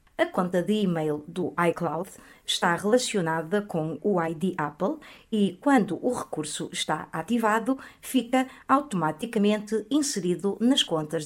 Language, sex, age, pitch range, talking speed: Portuguese, female, 50-69, 165-245 Hz, 125 wpm